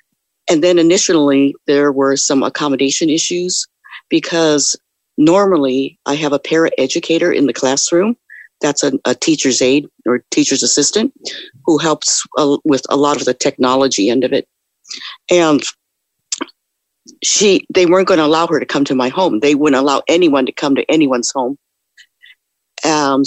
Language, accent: English, American